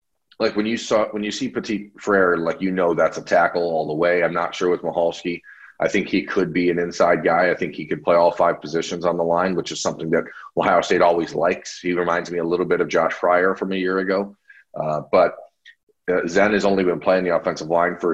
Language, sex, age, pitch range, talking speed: English, male, 30-49, 85-100 Hz, 250 wpm